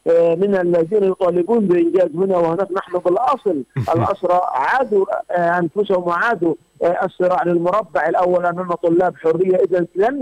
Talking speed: 115 wpm